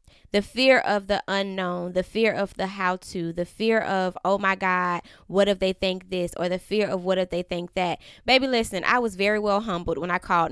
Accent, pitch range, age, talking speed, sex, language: American, 185-225 Hz, 20-39, 230 wpm, female, English